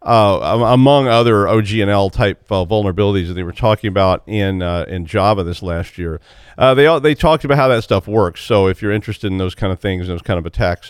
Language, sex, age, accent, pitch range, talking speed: English, male, 40-59, American, 105-140 Hz, 230 wpm